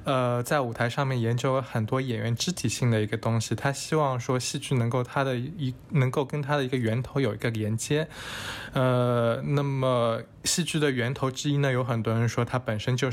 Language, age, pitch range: Chinese, 20-39, 110-135 Hz